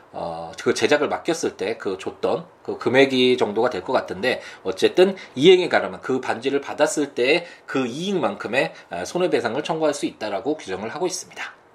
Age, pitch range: 20-39, 120-190 Hz